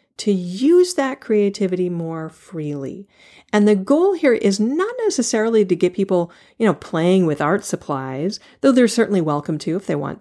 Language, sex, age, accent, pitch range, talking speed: English, female, 40-59, American, 170-230 Hz, 175 wpm